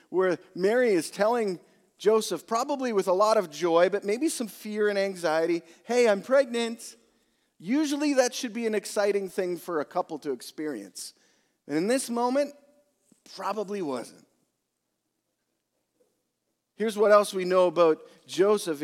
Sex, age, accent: male, 40-59, American